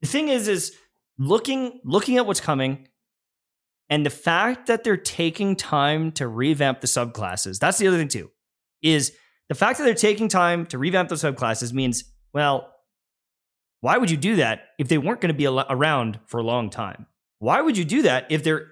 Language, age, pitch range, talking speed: English, 20-39, 130-185 Hz, 195 wpm